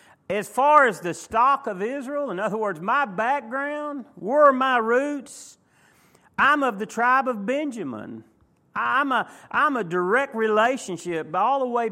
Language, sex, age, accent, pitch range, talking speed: English, male, 40-59, American, 210-285 Hz, 160 wpm